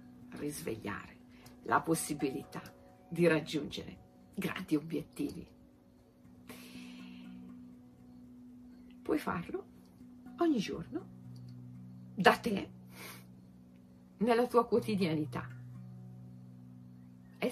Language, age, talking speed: Italian, 50-69, 60 wpm